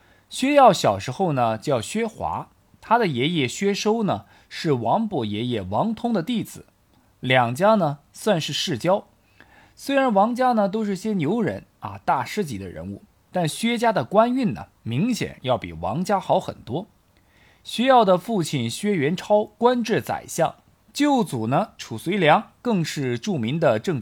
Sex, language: male, Chinese